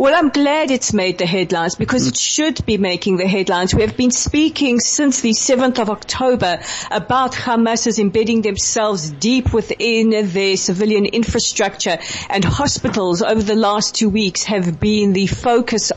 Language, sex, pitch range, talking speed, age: English, female, 200-240 Hz, 160 wpm, 40-59